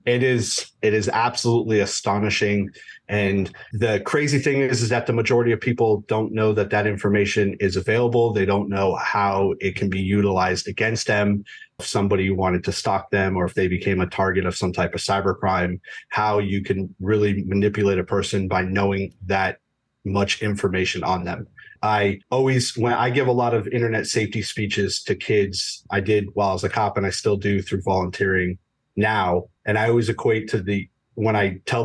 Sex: male